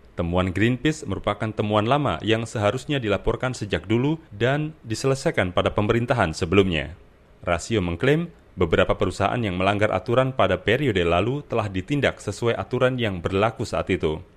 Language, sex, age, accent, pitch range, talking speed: Indonesian, male, 30-49, native, 95-120 Hz, 140 wpm